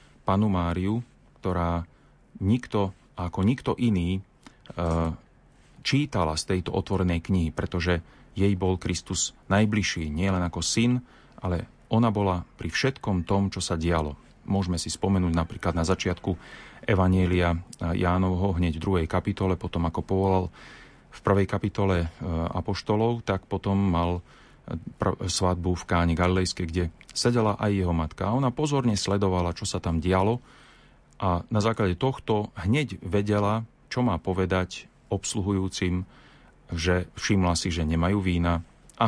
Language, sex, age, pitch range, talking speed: Slovak, male, 30-49, 90-105 Hz, 130 wpm